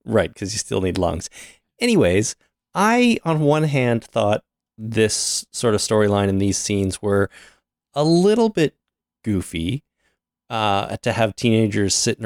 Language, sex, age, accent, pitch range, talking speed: English, male, 30-49, American, 100-140 Hz, 140 wpm